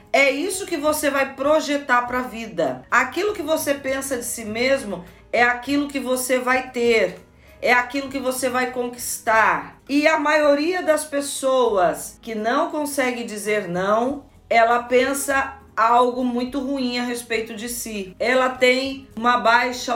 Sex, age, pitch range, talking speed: female, 40-59, 215-255 Hz, 155 wpm